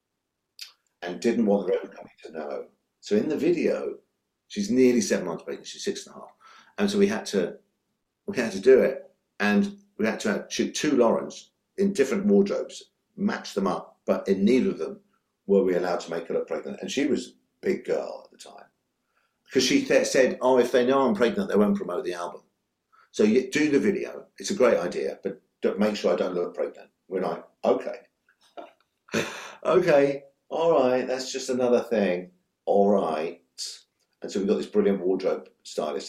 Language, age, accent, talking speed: English, 50-69, British, 200 wpm